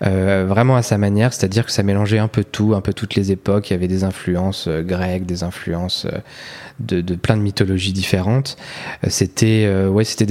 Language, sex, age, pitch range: French, male, 20-39, 100-115 Hz